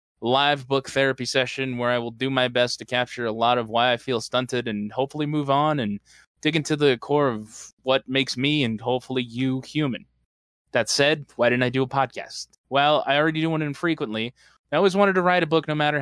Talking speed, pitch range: 220 wpm, 115-145 Hz